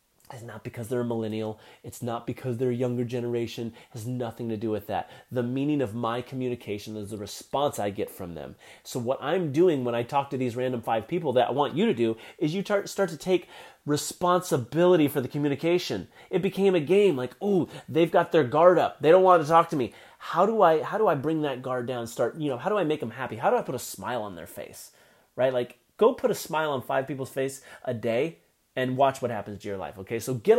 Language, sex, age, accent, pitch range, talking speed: English, male, 30-49, American, 120-155 Hz, 250 wpm